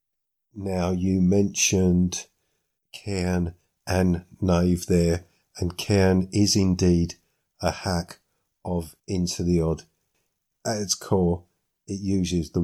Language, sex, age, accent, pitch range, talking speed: English, male, 50-69, British, 85-95 Hz, 110 wpm